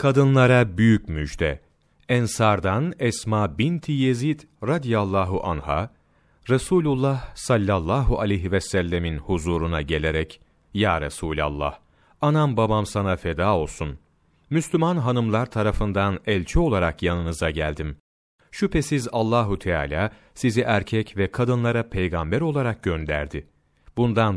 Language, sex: Turkish, male